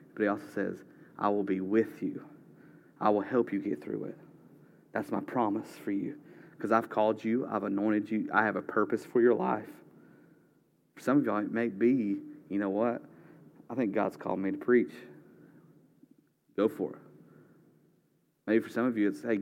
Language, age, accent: English, 30-49, American